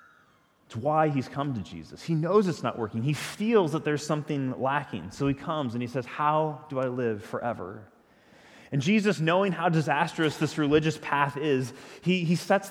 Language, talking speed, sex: English, 190 wpm, male